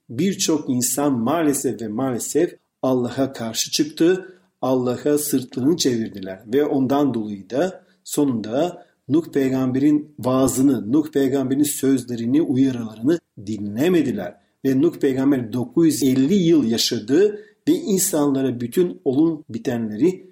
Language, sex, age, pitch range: Turkish, male, 50-69, 135-190 Hz